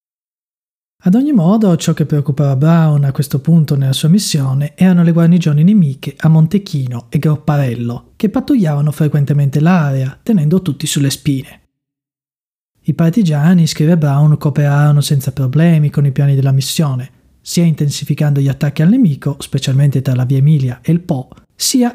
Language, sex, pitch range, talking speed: Italian, male, 140-170 Hz, 155 wpm